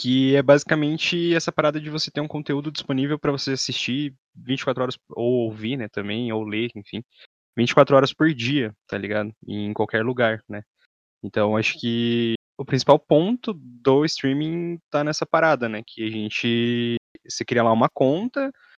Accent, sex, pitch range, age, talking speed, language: Brazilian, male, 115-145 Hz, 10-29, 170 wpm, Portuguese